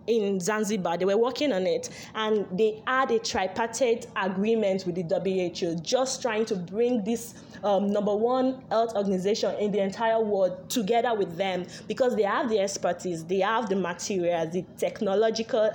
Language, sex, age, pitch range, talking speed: English, female, 20-39, 190-235 Hz, 170 wpm